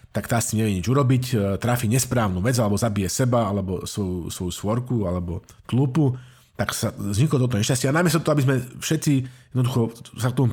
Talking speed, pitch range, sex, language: 180 wpm, 105-130 Hz, male, Slovak